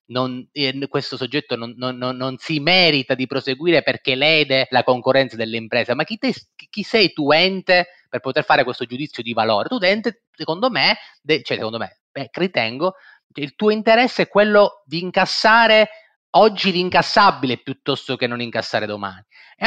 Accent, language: native, Italian